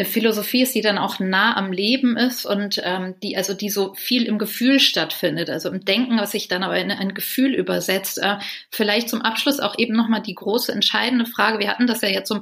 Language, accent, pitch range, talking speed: German, German, 185-220 Hz, 230 wpm